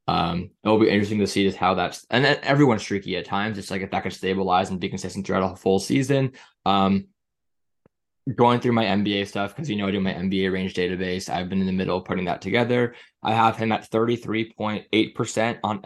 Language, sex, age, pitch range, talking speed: English, male, 20-39, 95-115 Hz, 225 wpm